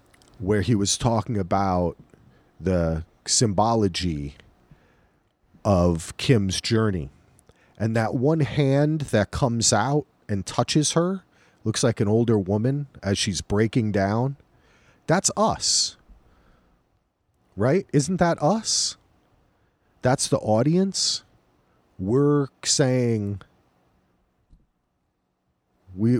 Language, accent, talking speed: English, American, 95 wpm